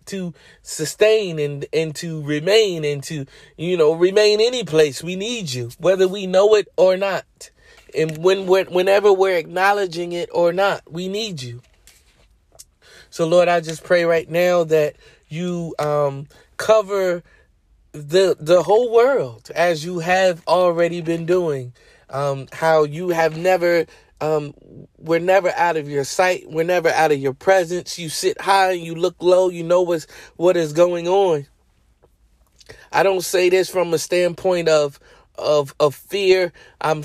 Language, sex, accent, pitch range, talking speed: English, male, American, 155-185 Hz, 160 wpm